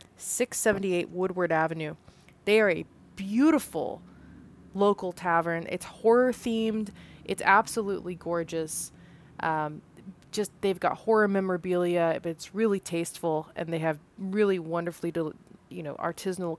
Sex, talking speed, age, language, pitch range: female, 125 wpm, 20-39, English, 160-190 Hz